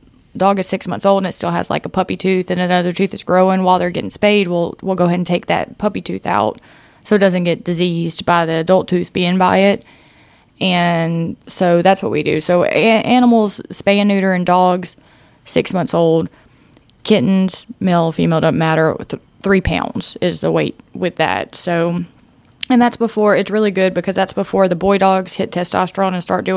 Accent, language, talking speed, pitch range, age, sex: American, English, 205 wpm, 180-205 Hz, 20-39, female